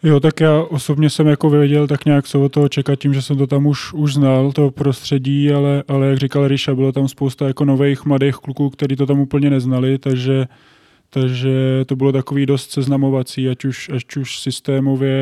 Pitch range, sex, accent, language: 130-140 Hz, male, native, Czech